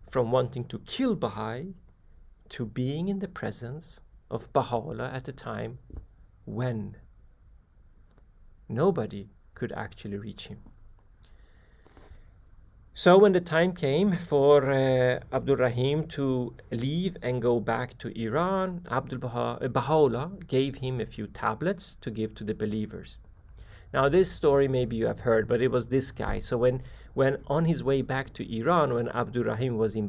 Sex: male